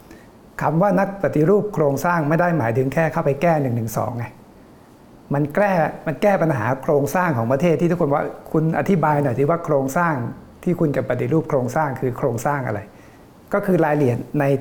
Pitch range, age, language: 130-165 Hz, 60-79, Thai